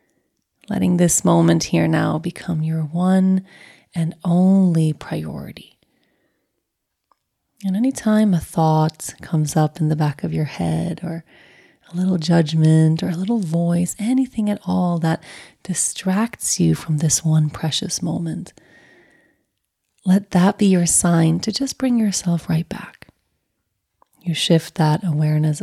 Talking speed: 135 wpm